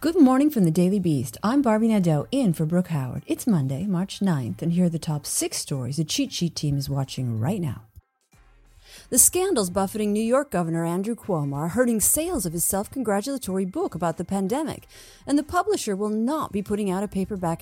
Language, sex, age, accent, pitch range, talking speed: English, female, 40-59, American, 155-240 Hz, 205 wpm